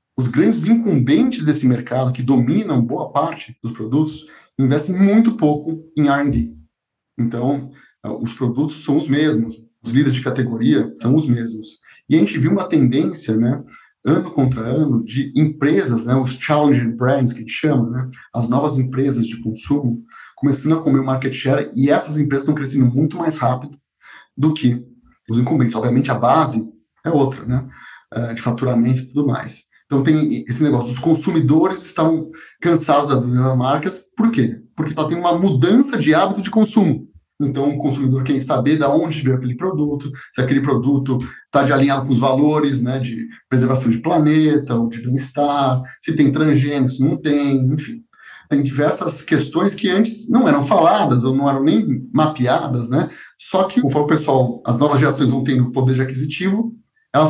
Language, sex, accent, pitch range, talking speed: Portuguese, male, Brazilian, 125-155 Hz, 175 wpm